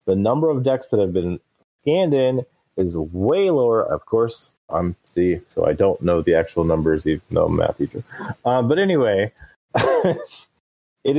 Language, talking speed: English, 175 wpm